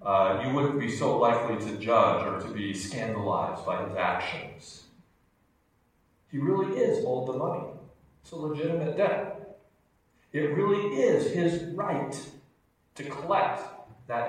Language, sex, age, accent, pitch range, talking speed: English, male, 40-59, American, 135-200 Hz, 140 wpm